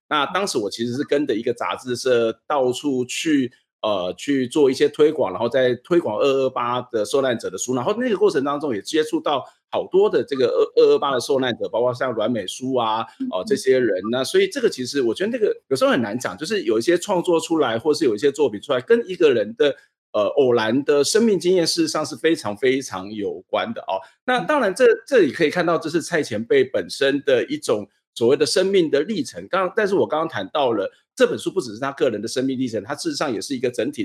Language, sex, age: Chinese, male, 50-69